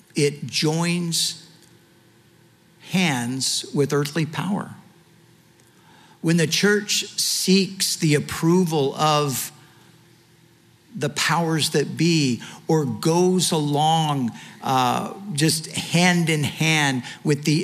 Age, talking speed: 50-69, 90 wpm